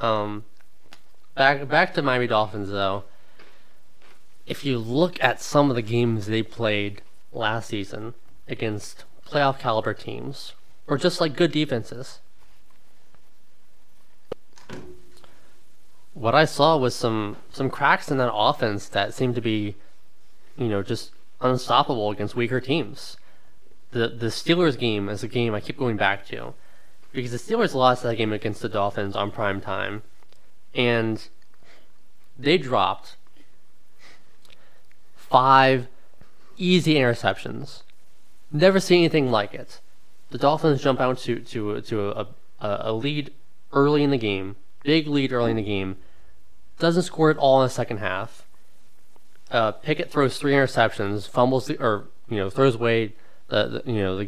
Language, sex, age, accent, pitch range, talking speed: English, male, 20-39, American, 105-135 Hz, 145 wpm